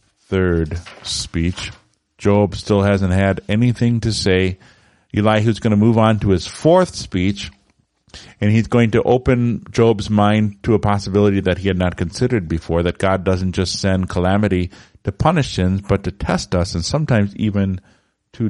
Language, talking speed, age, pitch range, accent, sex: English, 165 wpm, 50-69, 85-110 Hz, American, male